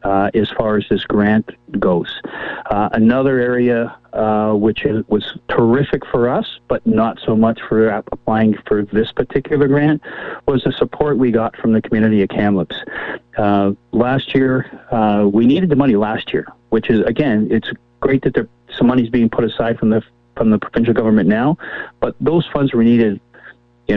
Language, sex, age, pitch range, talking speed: English, male, 40-59, 105-135 Hz, 180 wpm